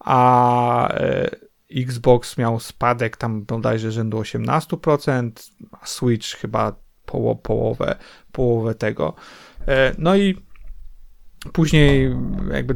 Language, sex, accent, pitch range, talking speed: Polish, male, native, 110-130 Hz, 85 wpm